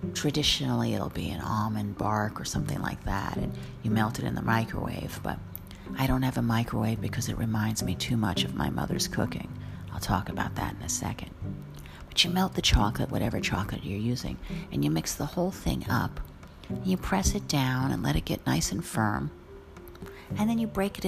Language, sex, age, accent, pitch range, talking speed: English, female, 50-69, American, 85-140 Hz, 205 wpm